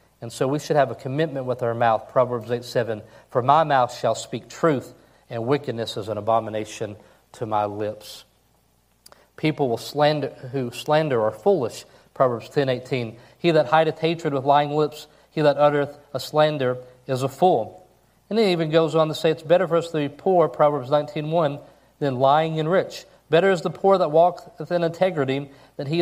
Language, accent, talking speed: English, American, 190 wpm